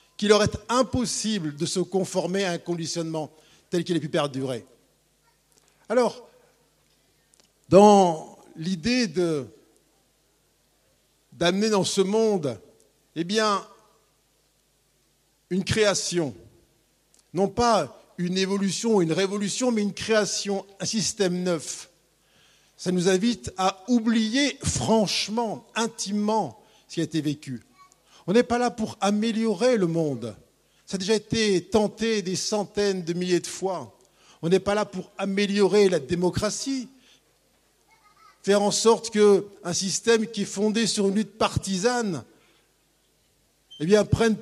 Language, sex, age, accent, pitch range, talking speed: French, male, 50-69, French, 175-220 Hz, 125 wpm